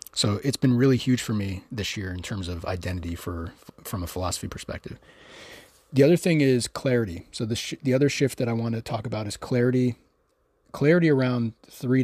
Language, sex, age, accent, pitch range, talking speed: English, male, 30-49, American, 95-120 Hz, 200 wpm